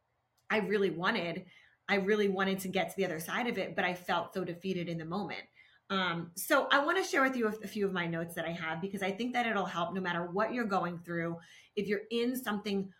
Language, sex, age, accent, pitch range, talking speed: English, female, 30-49, American, 180-220 Hz, 255 wpm